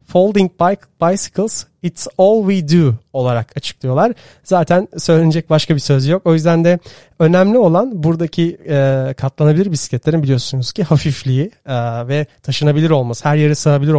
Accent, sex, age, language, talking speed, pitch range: native, male, 40-59, Turkish, 135 wpm, 145-195 Hz